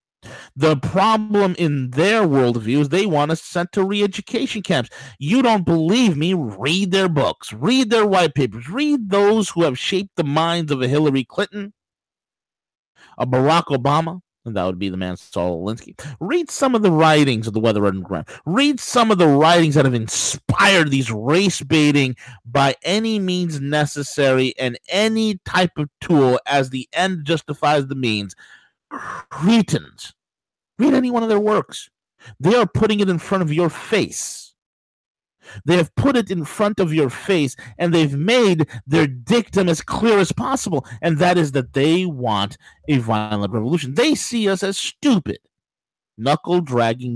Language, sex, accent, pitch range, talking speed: English, male, American, 130-190 Hz, 165 wpm